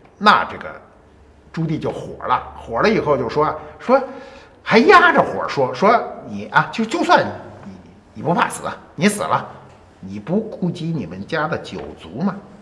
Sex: male